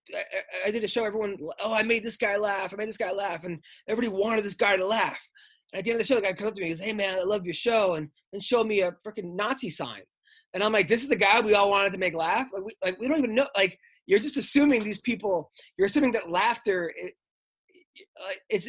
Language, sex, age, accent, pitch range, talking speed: English, male, 20-39, American, 150-200 Hz, 270 wpm